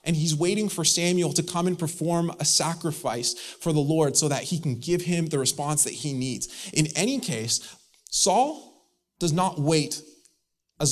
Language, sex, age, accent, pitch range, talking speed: English, male, 20-39, American, 125-160 Hz, 180 wpm